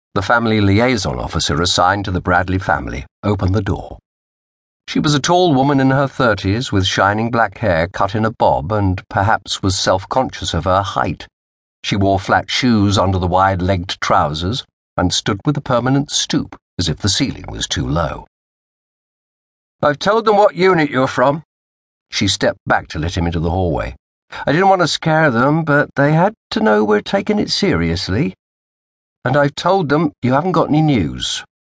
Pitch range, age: 85-135 Hz, 50-69